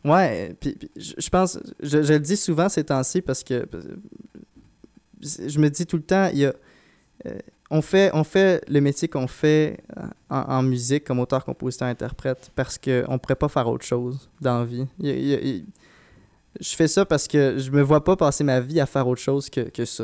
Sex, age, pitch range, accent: male, 20-39, 125-155 Hz, Canadian